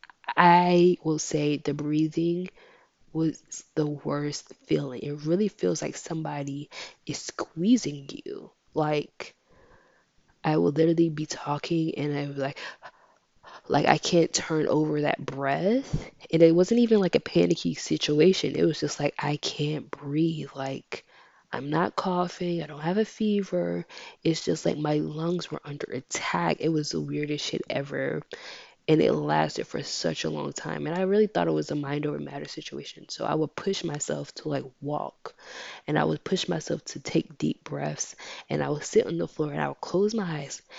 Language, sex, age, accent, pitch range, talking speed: English, female, 20-39, American, 145-205 Hz, 175 wpm